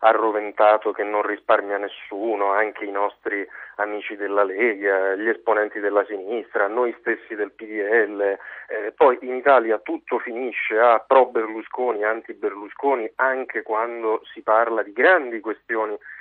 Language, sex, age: Italian, male, 40-59